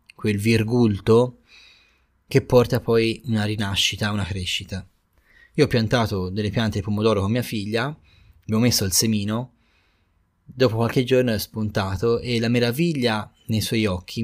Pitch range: 100-125 Hz